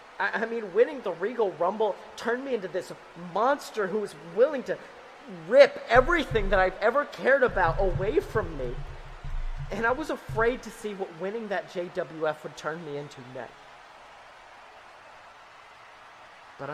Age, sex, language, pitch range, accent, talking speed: 30-49, male, English, 165-225 Hz, American, 145 wpm